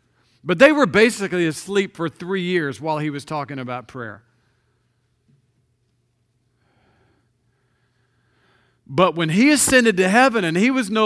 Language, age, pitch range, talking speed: English, 50-69, 125-180 Hz, 130 wpm